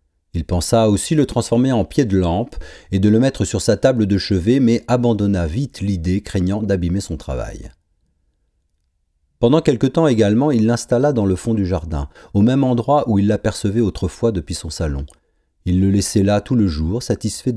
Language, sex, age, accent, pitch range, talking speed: French, male, 40-59, French, 80-110 Hz, 190 wpm